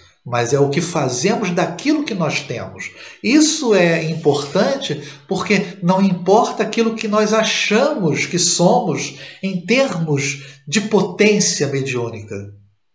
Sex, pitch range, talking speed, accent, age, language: male, 140-190 Hz, 120 wpm, Brazilian, 50-69, Portuguese